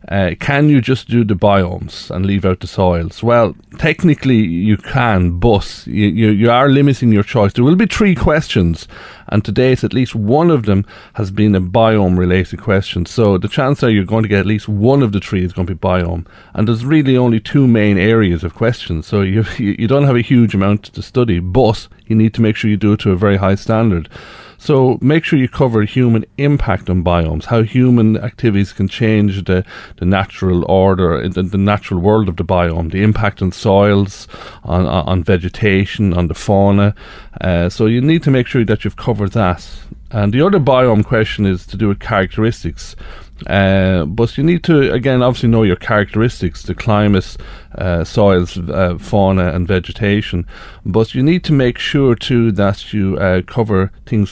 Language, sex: English, male